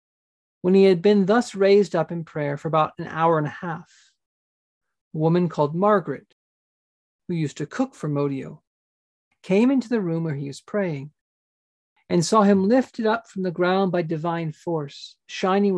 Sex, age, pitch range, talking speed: male, 40-59, 150-190 Hz, 175 wpm